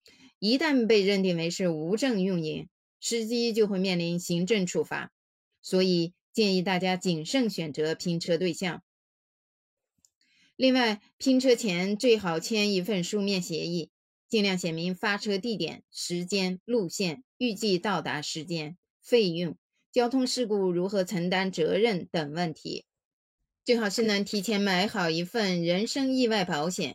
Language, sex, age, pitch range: Chinese, female, 20-39, 175-230 Hz